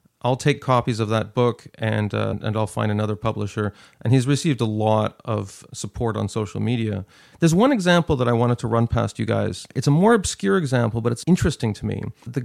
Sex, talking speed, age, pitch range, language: male, 215 wpm, 40-59, 110-130 Hz, English